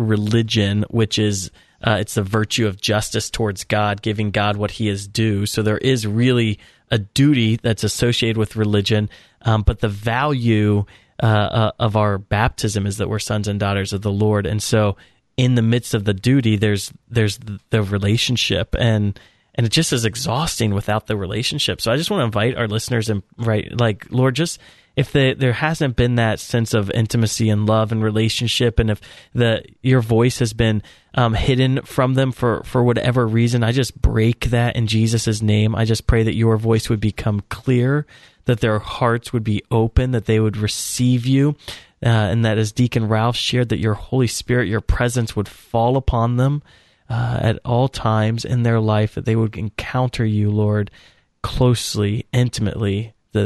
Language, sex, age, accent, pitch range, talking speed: English, male, 30-49, American, 105-120 Hz, 185 wpm